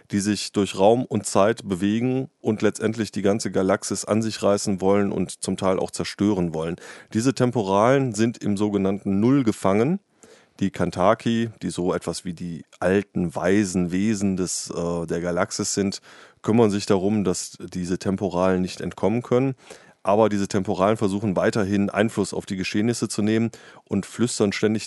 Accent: German